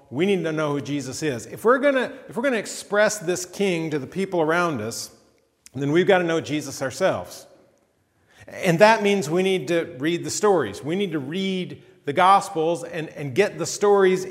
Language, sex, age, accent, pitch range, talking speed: English, male, 40-59, American, 140-180 Hz, 195 wpm